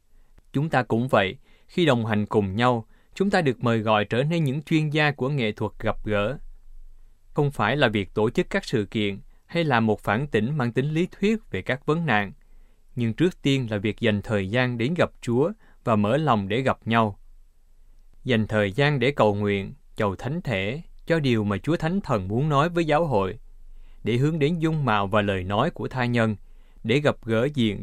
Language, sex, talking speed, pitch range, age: Vietnamese, male, 210 wpm, 105-145 Hz, 20-39